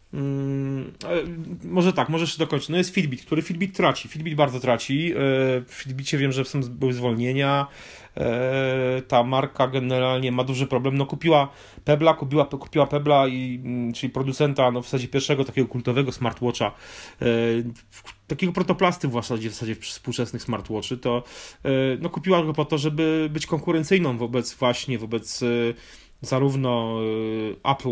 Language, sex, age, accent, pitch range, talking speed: Polish, male, 30-49, native, 120-145 Hz, 140 wpm